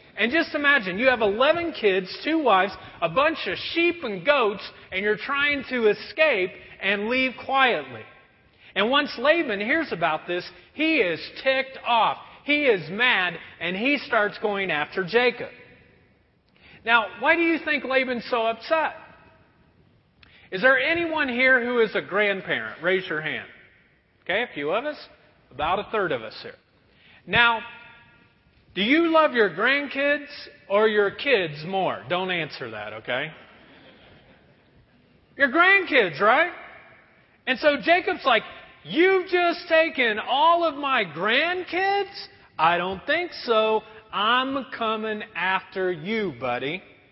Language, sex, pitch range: English, male, 200-290 Hz